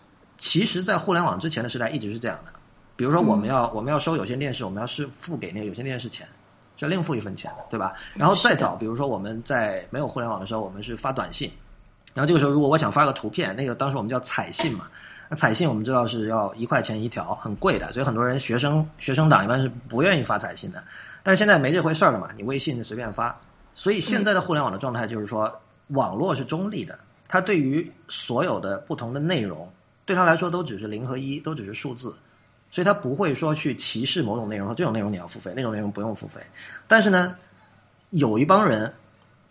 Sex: male